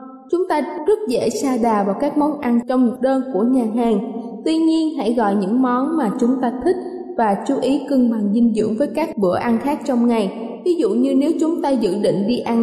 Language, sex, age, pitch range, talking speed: Vietnamese, female, 20-39, 225-295 Hz, 240 wpm